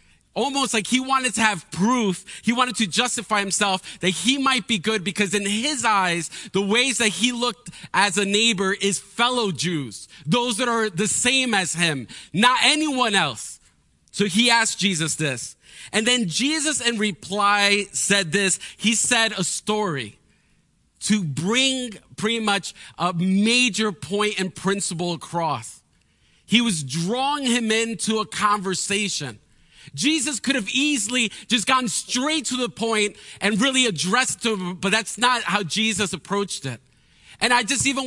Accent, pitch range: American, 185-240 Hz